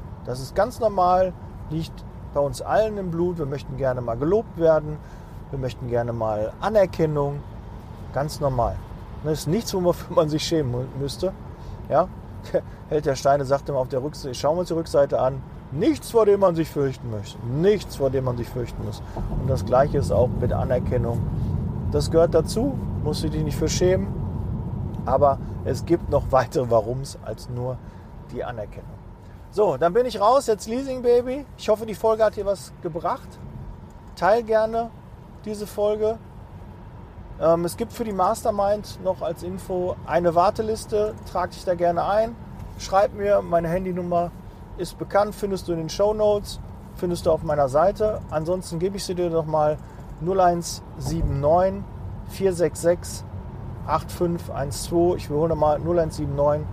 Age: 40-59